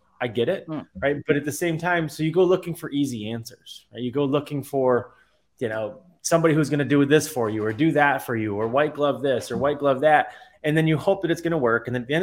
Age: 20-39